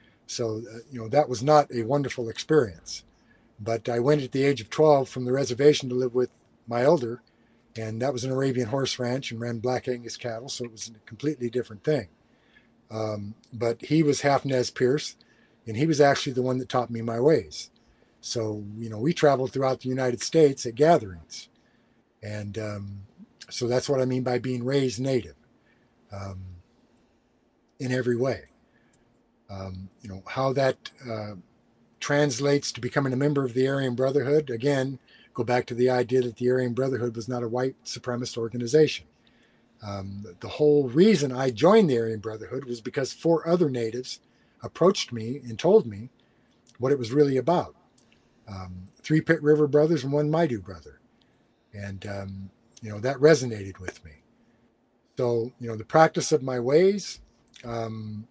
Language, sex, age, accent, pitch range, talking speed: English, male, 50-69, American, 115-140 Hz, 175 wpm